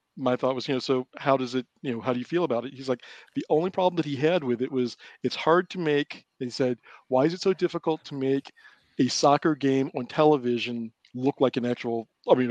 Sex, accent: male, American